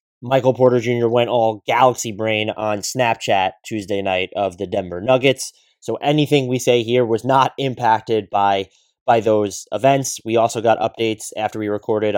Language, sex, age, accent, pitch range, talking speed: English, male, 20-39, American, 110-150 Hz, 170 wpm